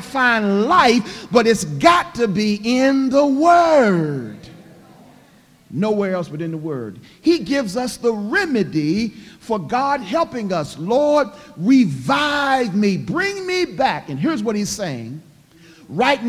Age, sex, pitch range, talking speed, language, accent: 50-69, male, 180-240 Hz, 135 wpm, English, American